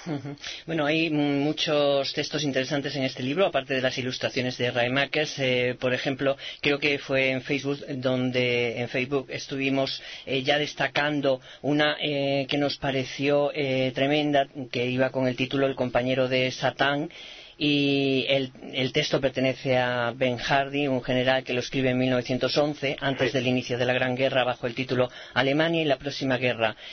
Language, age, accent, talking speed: Spanish, 30-49, Spanish, 165 wpm